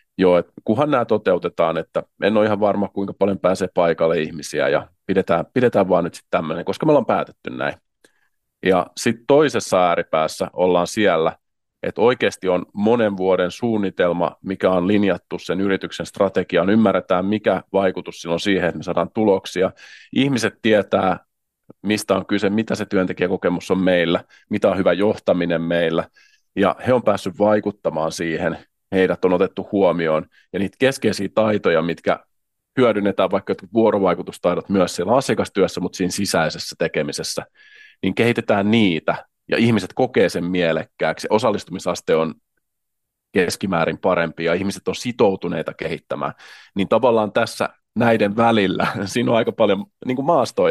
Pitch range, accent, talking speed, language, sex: 90-110 Hz, native, 140 wpm, Finnish, male